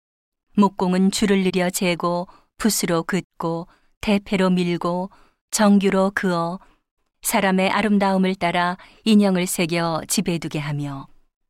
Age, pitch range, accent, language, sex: 40-59, 170-205 Hz, native, Korean, female